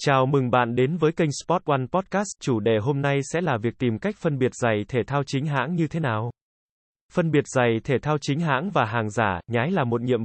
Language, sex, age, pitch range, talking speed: Vietnamese, male, 20-39, 120-155 Hz, 245 wpm